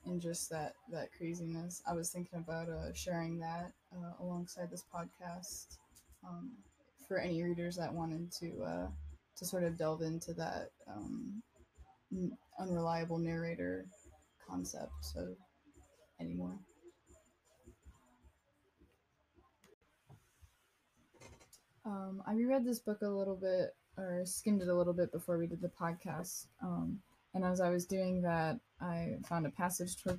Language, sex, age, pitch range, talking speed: English, female, 20-39, 165-190 Hz, 135 wpm